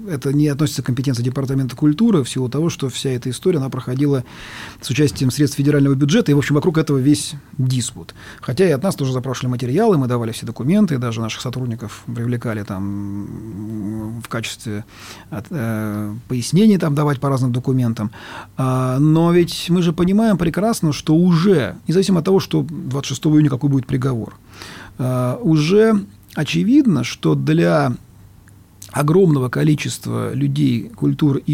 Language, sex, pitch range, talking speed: Russian, male, 115-175 Hz, 150 wpm